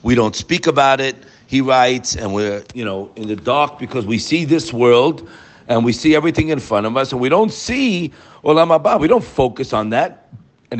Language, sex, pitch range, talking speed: English, male, 115-160 Hz, 210 wpm